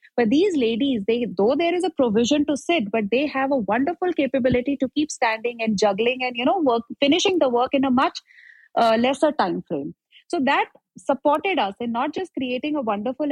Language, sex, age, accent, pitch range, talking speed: Hindi, female, 30-49, native, 230-295 Hz, 205 wpm